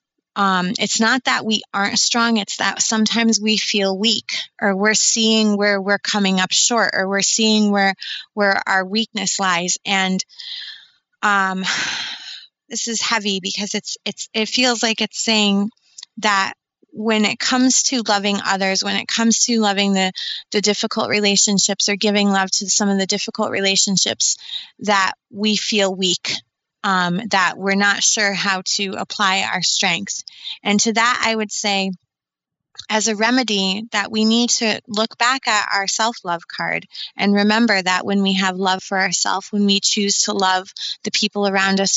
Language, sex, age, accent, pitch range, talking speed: English, female, 20-39, American, 195-220 Hz, 170 wpm